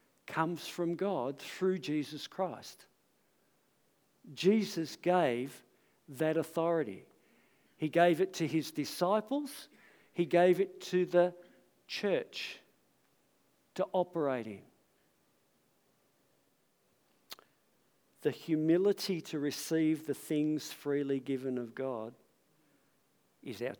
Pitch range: 125-165 Hz